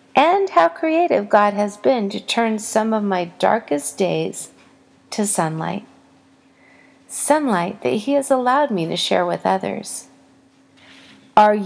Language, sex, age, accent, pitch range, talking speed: English, female, 40-59, American, 190-255 Hz, 135 wpm